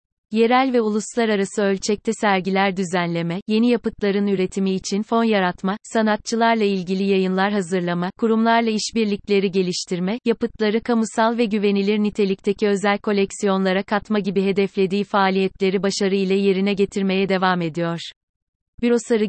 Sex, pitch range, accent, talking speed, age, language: female, 190-220 Hz, native, 110 wpm, 30-49, Turkish